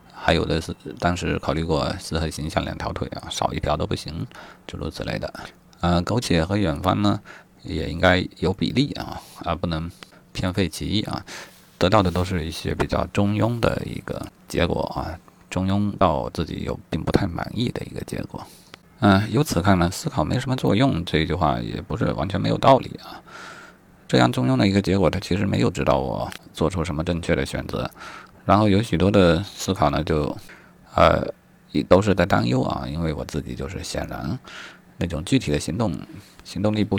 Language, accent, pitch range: Chinese, native, 80-100 Hz